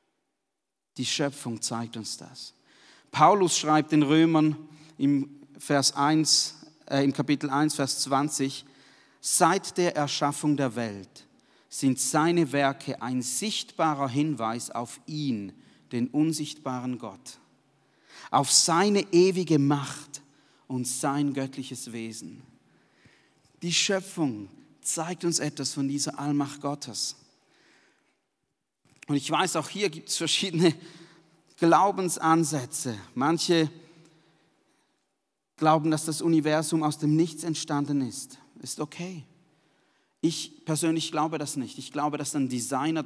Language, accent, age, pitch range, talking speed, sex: German, German, 40-59, 140-165 Hz, 115 wpm, male